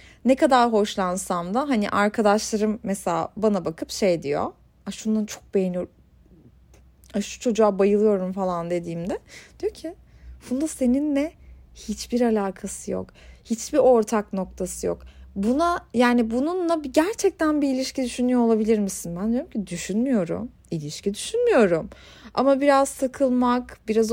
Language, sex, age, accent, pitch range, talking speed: Turkish, female, 30-49, native, 195-270 Hz, 125 wpm